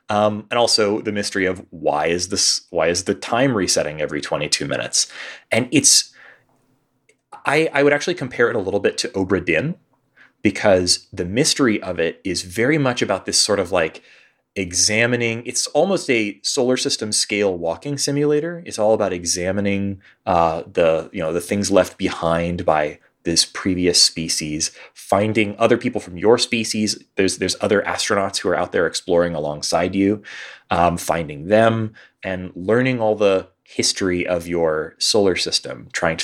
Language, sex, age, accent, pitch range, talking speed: English, male, 30-49, American, 90-115 Hz, 165 wpm